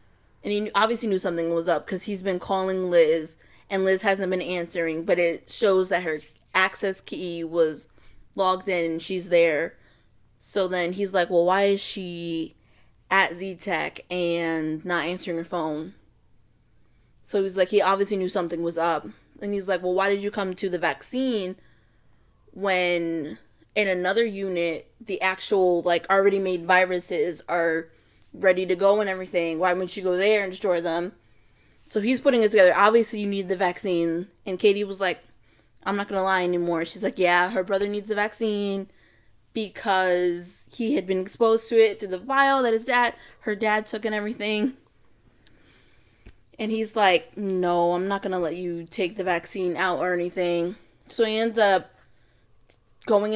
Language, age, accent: English, 10-29, American